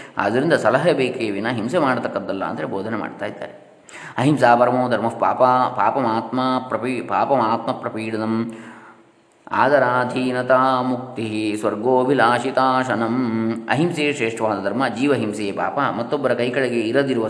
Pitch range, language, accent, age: 110-125 Hz, Kannada, native, 20-39